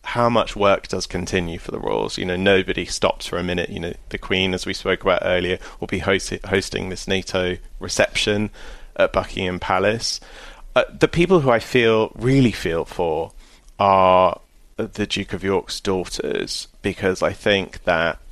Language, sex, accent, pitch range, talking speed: English, male, British, 90-100 Hz, 170 wpm